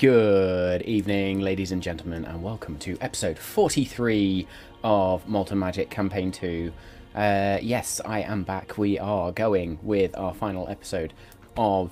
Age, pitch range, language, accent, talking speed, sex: 20-39, 85-100 Hz, English, British, 140 wpm, male